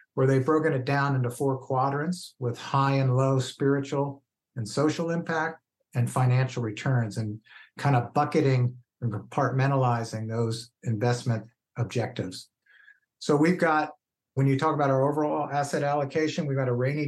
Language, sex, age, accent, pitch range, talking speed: English, male, 50-69, American, 120-140 Hz, 150 wpm